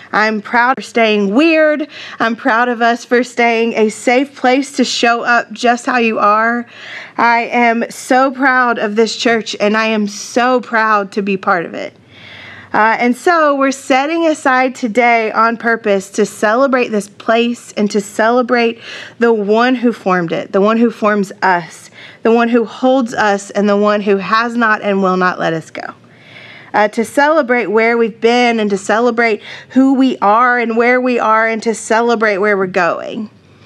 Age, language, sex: 30-49, English, female